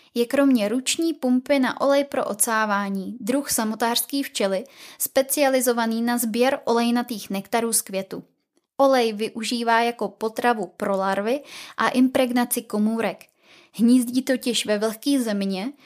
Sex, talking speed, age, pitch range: female, 120 wpm, 20-39, 215-265 Hz